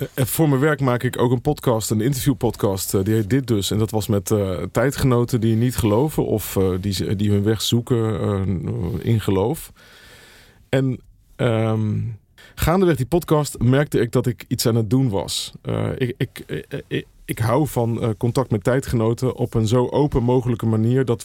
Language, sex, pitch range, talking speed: Dutch, male, 110-140 Hz, 175 wpm